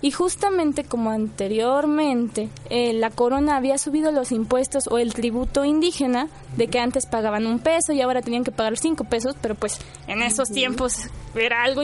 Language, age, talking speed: Spanish, 20-39, 175 wpm